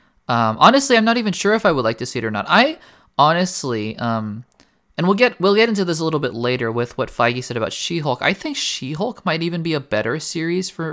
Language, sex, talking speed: English, male, 245 wpm